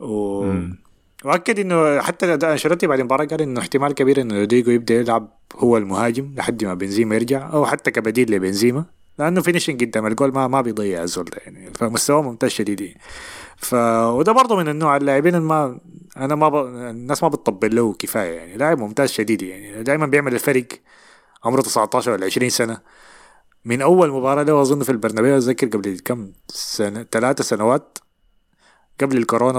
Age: 20-39